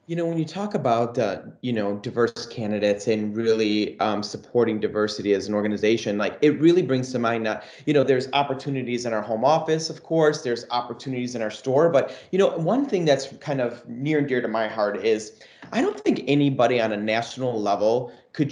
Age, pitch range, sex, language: 30-49, 115-155 Hz, male, English